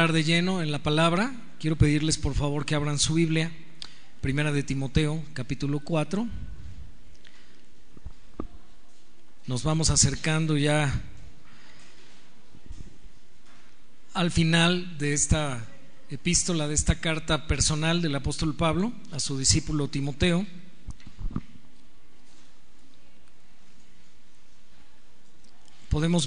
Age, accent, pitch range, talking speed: 40-59, Mexican, 155-180 Hz, 90 wpm